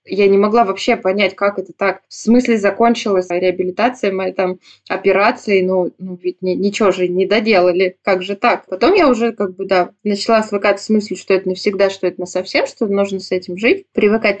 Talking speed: 205 wpm